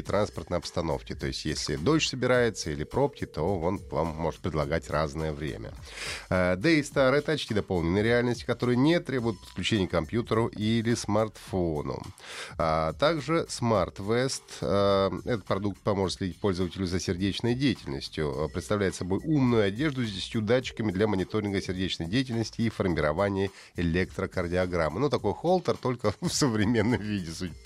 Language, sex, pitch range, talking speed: Russian, male, 95-135 Hz, 145 wpm